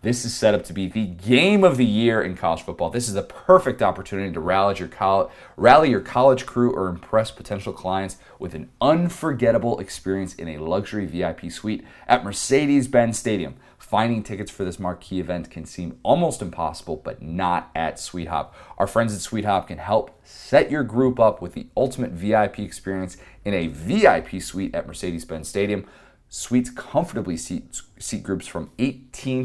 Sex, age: male, 30-49